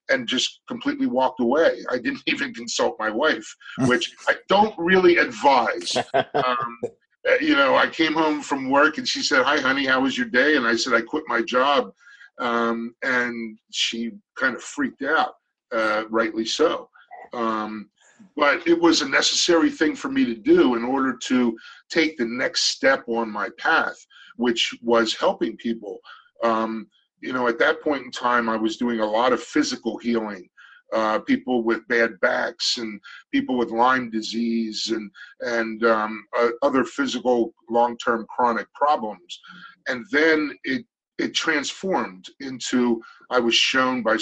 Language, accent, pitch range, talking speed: English, American, 115-160 Hz, 160 wpm